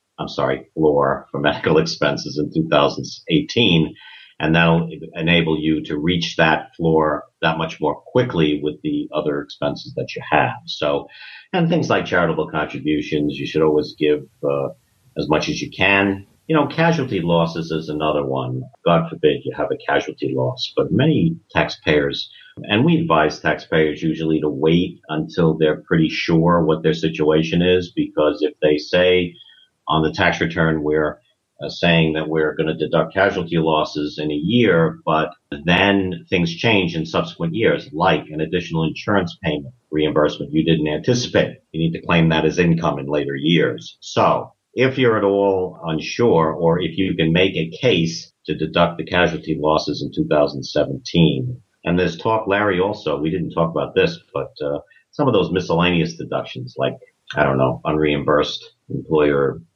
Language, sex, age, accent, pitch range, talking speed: English, male, 50-69, American, 75-90 Hz, 165 wpm